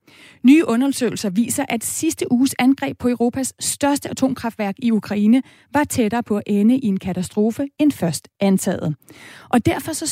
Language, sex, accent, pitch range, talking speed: Danish, female, native, 190-260 Hz, 160 wpm